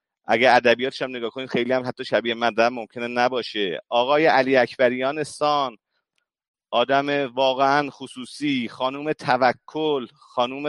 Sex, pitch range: male, 125-170 Hz